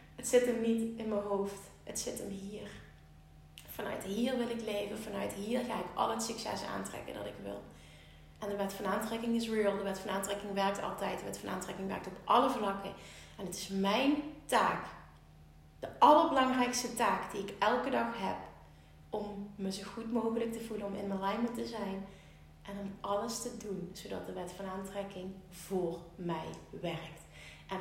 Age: 30-49